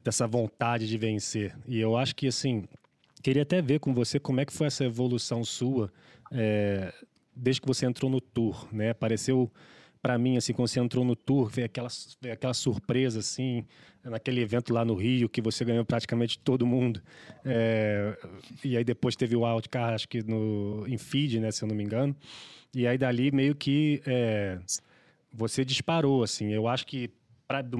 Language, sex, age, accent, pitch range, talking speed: Portuguese, male, 20-39, Brazilian, 115-140 Hz, 175 wpm